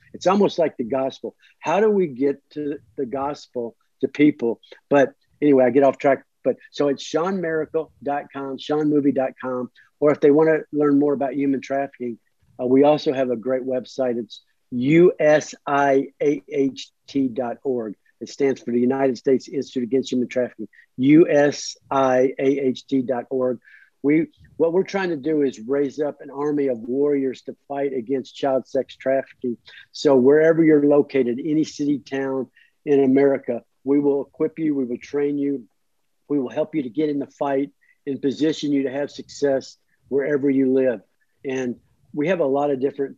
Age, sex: 50-69, male